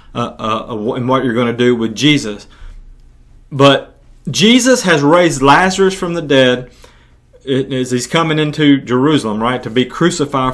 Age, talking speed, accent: 30-49, 160 wpm, American